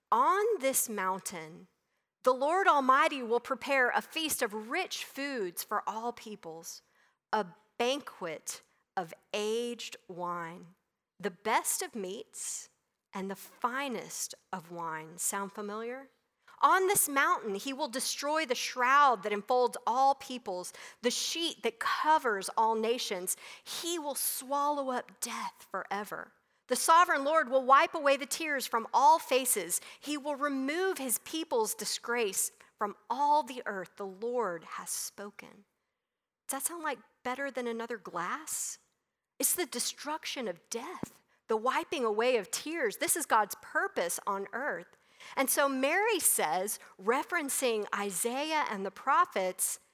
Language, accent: English, American